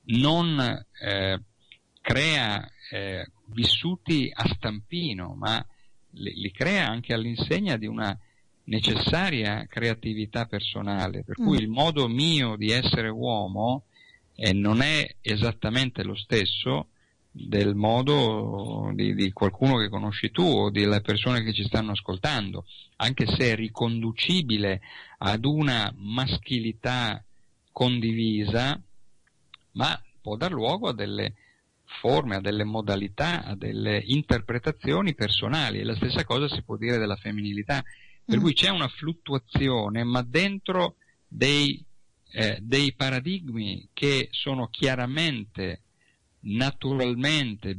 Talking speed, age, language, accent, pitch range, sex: 115 wpm, 50-69, Italian, native, 105-135 Hz, male